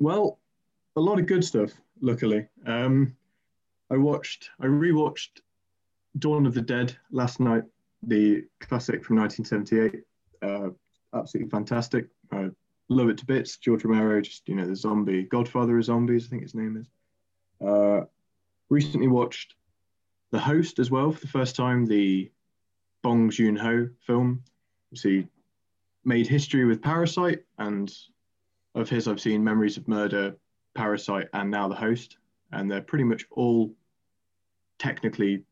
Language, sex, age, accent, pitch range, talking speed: English, male, 20-39, British, 100-130 Hz, 145 wpm